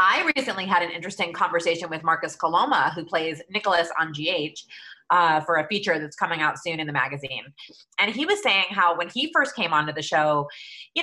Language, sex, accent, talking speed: English, female, American, 205 wpm